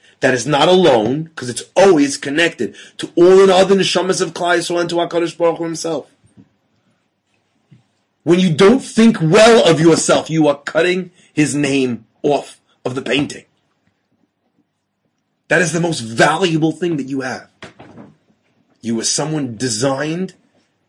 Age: 30-49